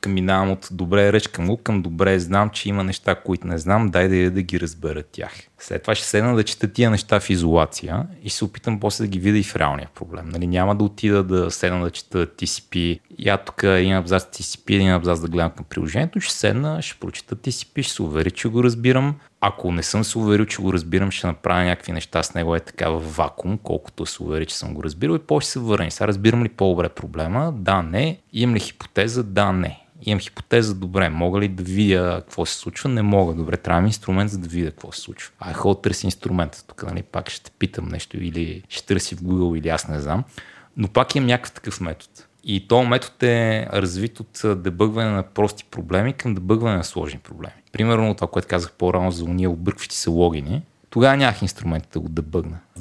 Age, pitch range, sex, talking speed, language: 30-49, 90-110 Hz, male, 220 wpm, Bulgarian